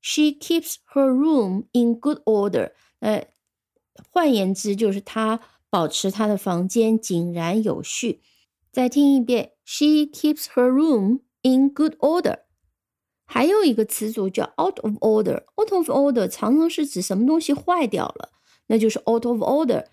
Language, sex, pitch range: Chinese, female, 200-275 Hz